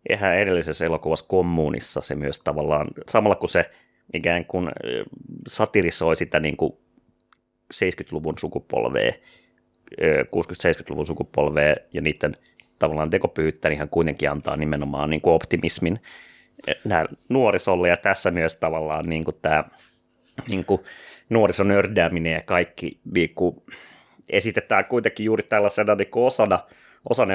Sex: male